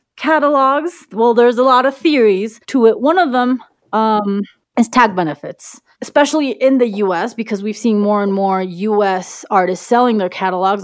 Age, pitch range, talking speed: 30-49, 180-235 Hz, 170 wpm